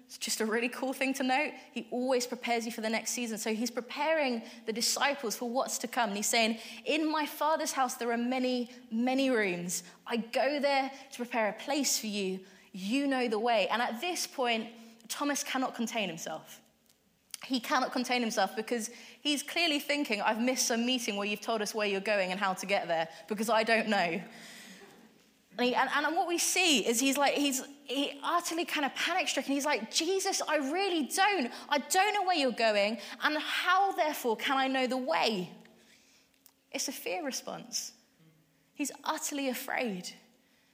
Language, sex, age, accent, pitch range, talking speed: English, female, 20-39, British, 230-280 Hz, 185 wpm